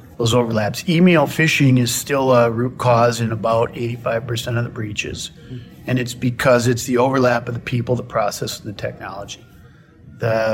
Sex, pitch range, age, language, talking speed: male, 120-140 Hz, 40-59, English, 170 wpm